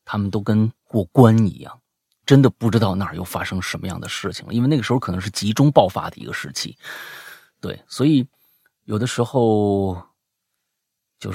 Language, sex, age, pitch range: Chinese, male, 30-49, 110-155 Hz